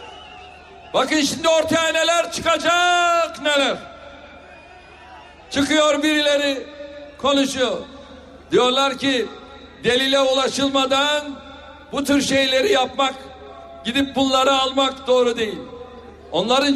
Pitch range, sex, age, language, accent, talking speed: 255-305 Hz, male, 60-79, Turkish, native, 80 wpm